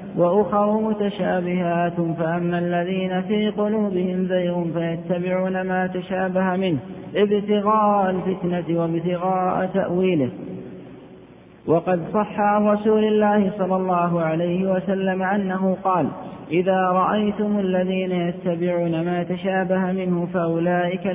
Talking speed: 95 wpm